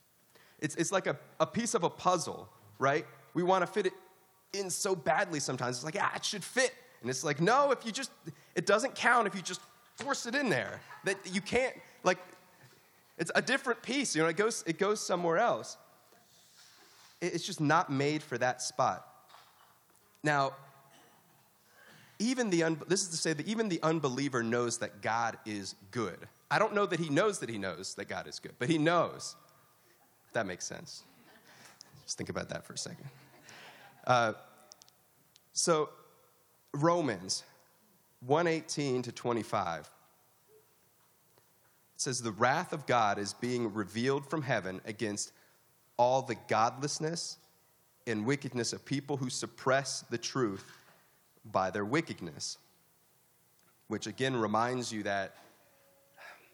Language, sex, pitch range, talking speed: English, male, 120-185 Hz, 155 wpm